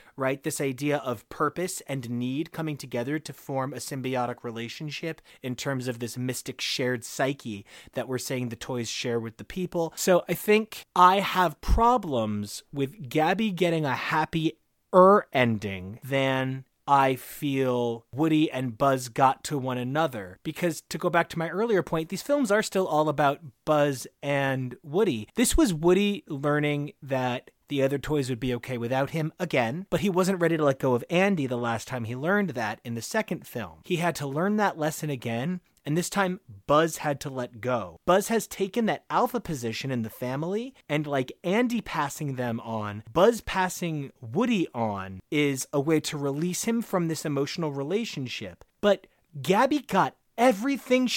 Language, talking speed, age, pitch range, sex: English, 175 wpm, 30-49, 125-180 Hz, male